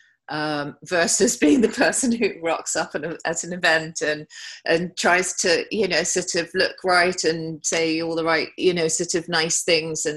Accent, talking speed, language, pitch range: British, 195 wpm, English, 155-185 Hz